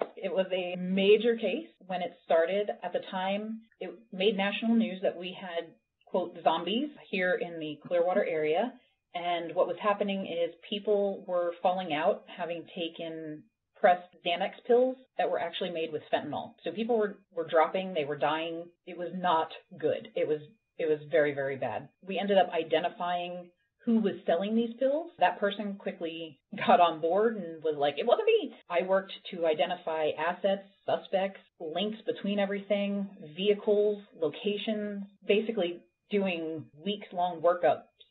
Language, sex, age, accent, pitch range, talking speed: English, female, 30-49, American, 165-210 Hz, 155 wpm